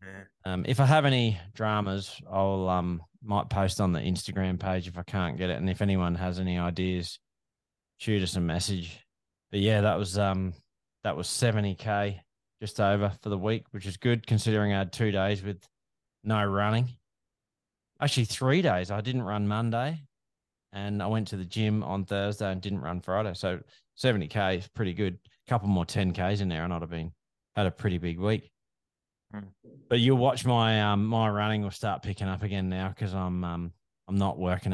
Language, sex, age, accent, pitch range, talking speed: English, male, 20-39, Australian, 90-110 Hz, 195 wpm